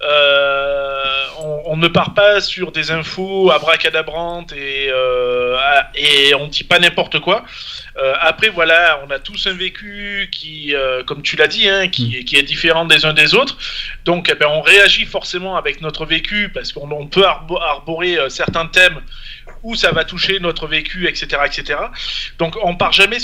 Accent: French